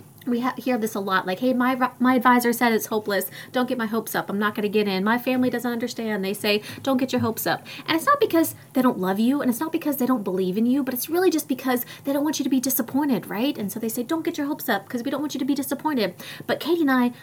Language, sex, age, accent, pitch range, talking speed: English, female, 30-49, American, 215-275 Hz, 300 wpm